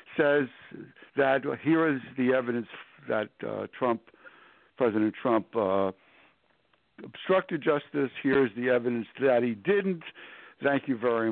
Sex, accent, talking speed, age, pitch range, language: male, American, 135 wpm, 60-79, 110-140 Hz, English